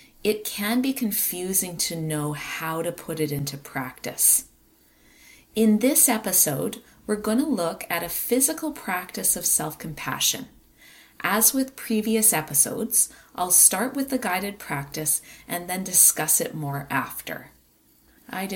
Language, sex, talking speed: English, female, 135 wpm